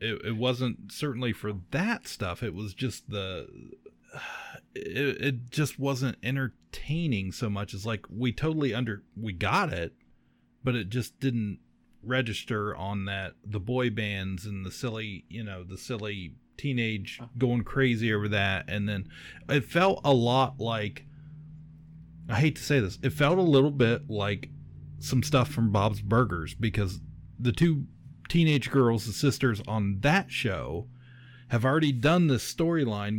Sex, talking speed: male, 155 wpm